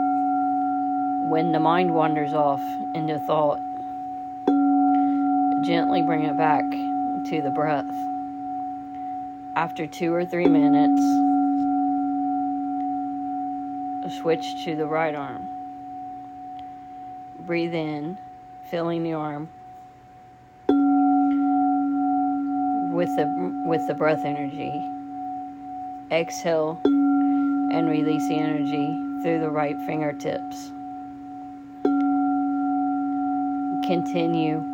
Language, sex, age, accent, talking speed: English, female, 40-59, American, 75 wpm